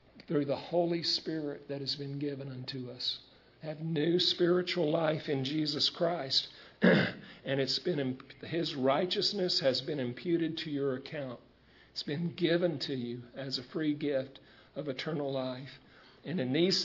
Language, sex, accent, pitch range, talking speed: English, male, American, 135-165 Hz, 155 wpm